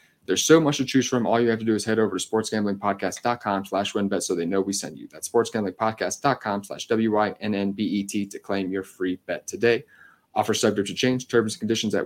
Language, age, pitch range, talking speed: English, 30-49, 100-120 Hz, 250 wpm